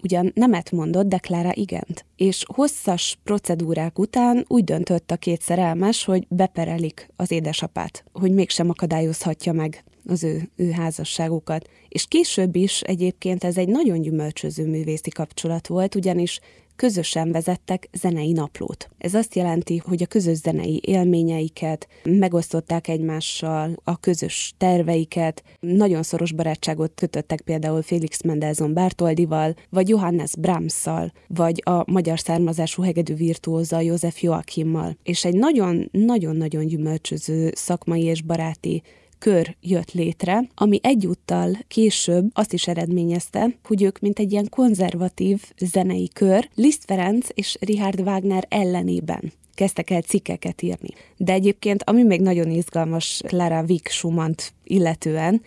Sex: female